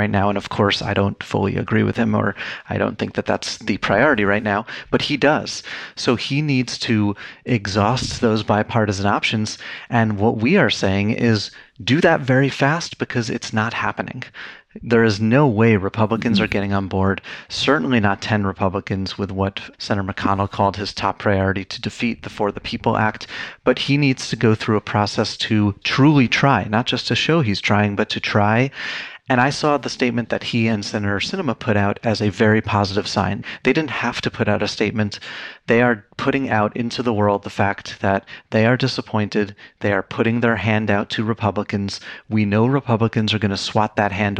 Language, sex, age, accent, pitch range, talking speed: English, male, 30-49, American, 100-115 Hz, 200 wpm